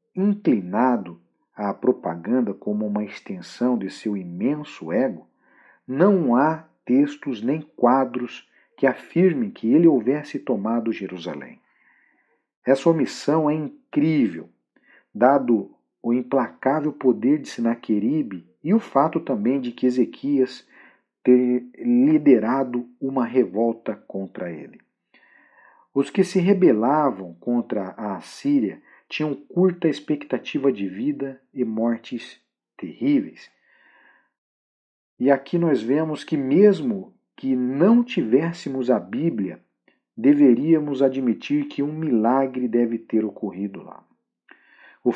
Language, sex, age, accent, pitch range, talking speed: Portuguese, male, 50-69, Brazilian, 120-170 Hz, 110 wpm